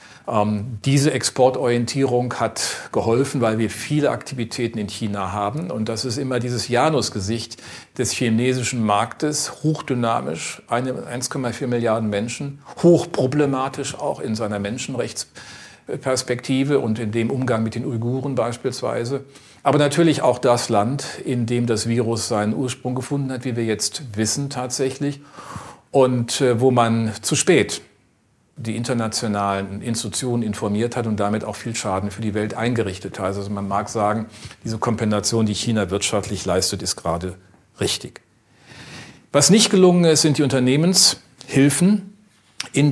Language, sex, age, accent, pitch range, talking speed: German, male, 50-69, German, 110-135 Hz, 135 wpm